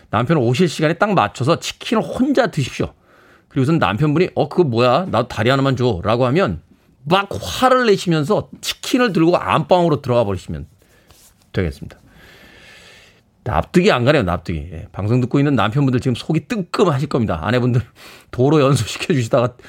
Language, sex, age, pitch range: Korean, male, 40-59, 120-175 Hz